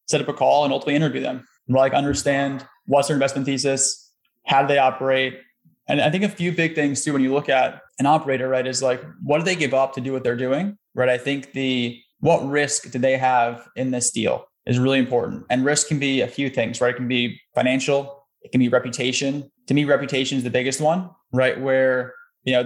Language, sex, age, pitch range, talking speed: English, male, 20-39, 125-140 Hz, 230 wpm